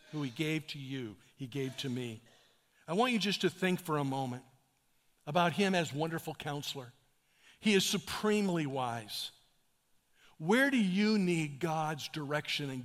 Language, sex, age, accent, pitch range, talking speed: English, male, 50-69, American, 130-175 Hz, 160 wpm